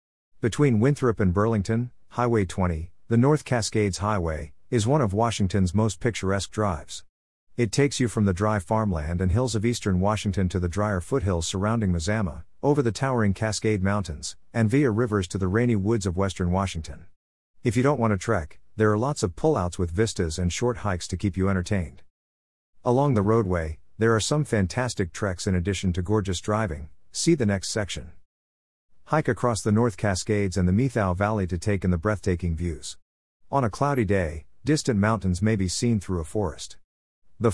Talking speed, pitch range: 185 wpm, 90-115 Hz